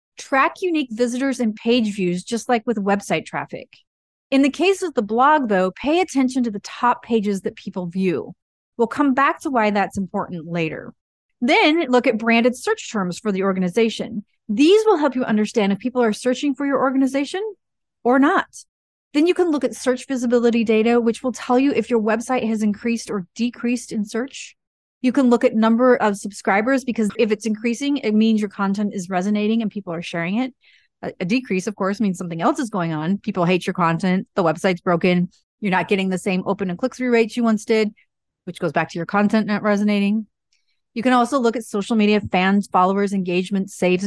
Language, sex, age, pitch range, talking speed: English, female, 30-49, 195-250 Hz, 205 wpm